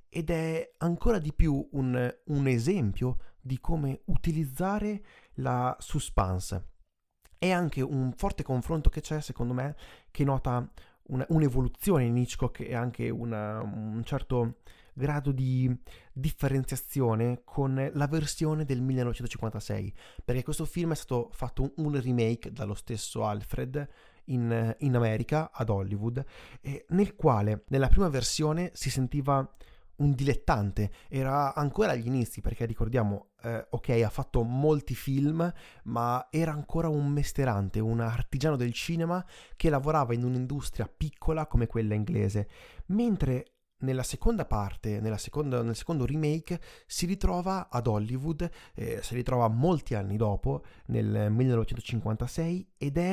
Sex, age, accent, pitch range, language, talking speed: male, 30-49, native, 115-155 Hz, Italian, 125 wpm